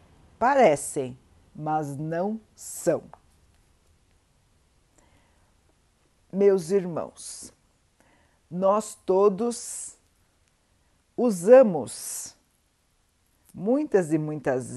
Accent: Brazilian